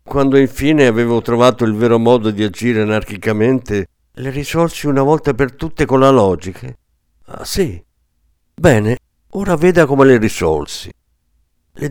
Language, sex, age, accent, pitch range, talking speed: Italian, male, 50-69, native, 90-140 Hz, 140 wpm